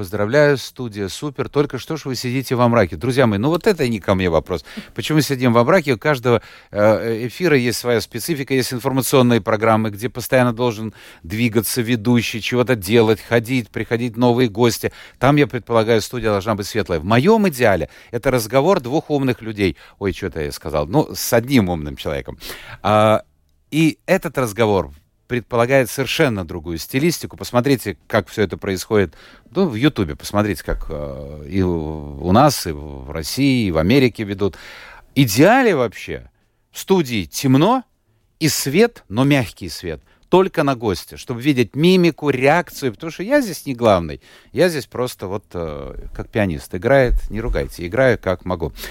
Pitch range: 100-135 Hz